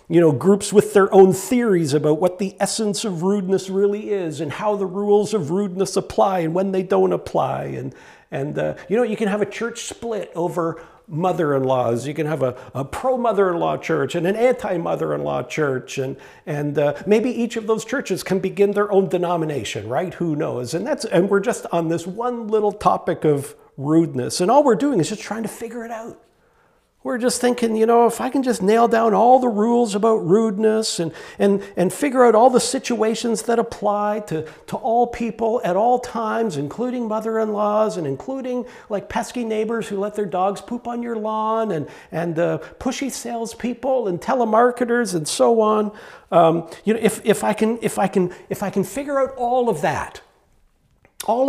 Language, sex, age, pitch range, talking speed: English, male, 50-69, 180-230 Hz, 195 wpm